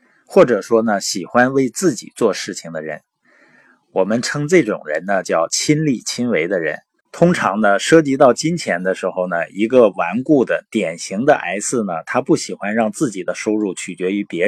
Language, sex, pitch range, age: Chinese, male, 105-150 Hz, 20-39